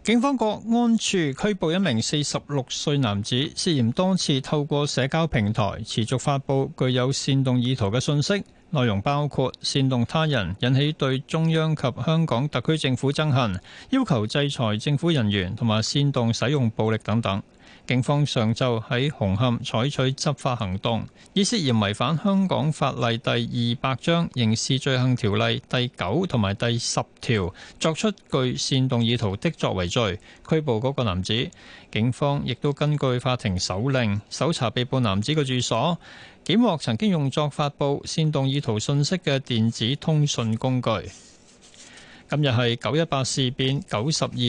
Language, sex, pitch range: Chinese, male, 115-150 Hz